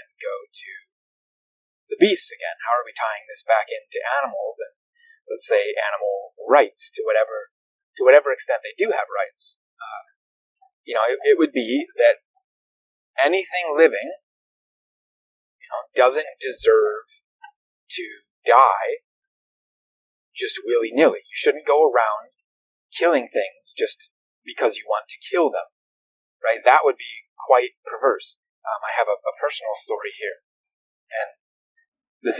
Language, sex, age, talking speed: English, male, 30-49, 135 wpm